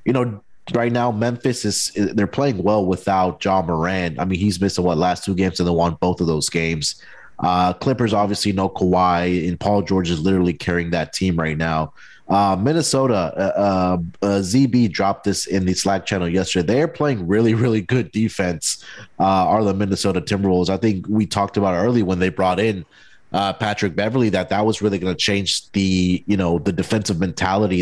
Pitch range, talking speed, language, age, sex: 95-115 Hz, 200 wpm, English, 30-49, male